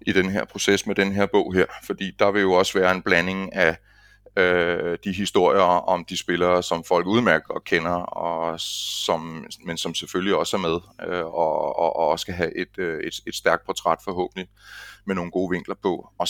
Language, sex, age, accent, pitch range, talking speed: Danish, male, 30-49, native, 90-105 Hz, 205 wpm